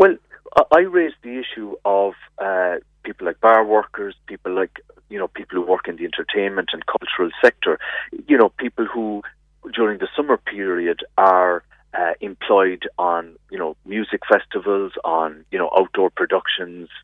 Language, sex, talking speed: English, male, 160 wpm